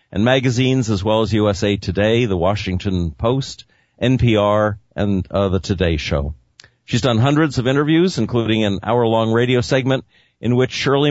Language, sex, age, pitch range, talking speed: English, male, 50-69, 95-120 Hz, 155 wpm